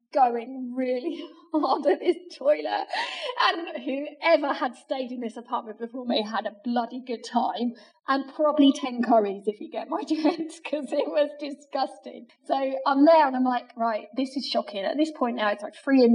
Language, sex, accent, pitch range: English, female, British, 230-300 Hz